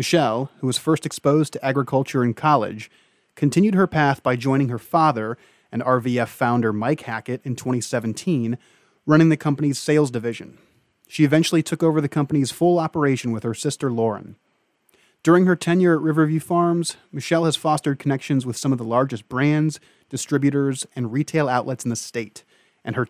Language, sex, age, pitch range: English, male, 30-49, 120-150 Hz